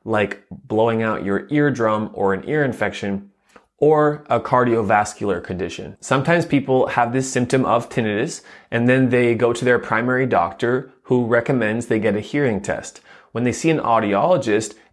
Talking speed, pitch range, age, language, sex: 160 wpm, 105-130 Hz, 20-39, English, male